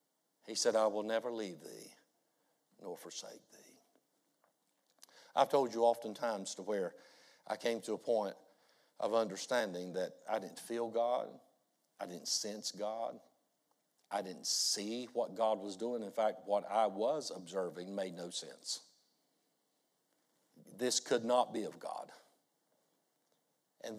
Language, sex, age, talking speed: English, male, 60-79, 140 wpm